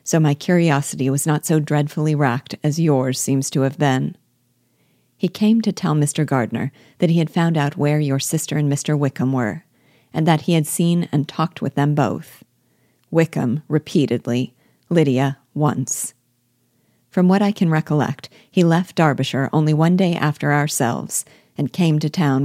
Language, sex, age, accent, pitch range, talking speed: English, female, 40-59, American, 135-165 Hz, 170 wpm